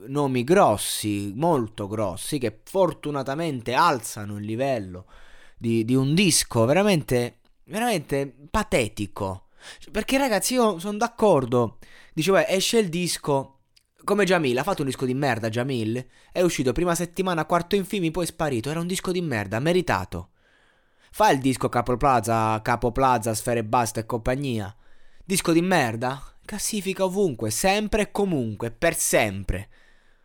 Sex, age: male, 20-39